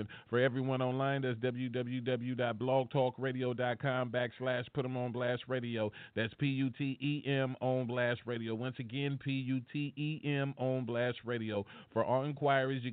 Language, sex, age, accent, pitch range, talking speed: English, male, 40-59, American, 115-135 Hz, 160 wpm